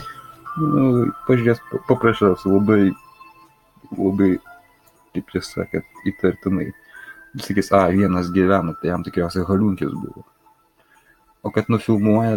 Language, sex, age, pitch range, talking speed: English, male, 30-49, 95-120 Hz, 90 wpm